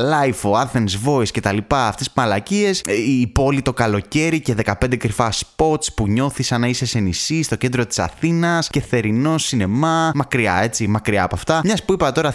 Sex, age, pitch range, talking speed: male, 20-39, 115-145 Hz, 190 wpm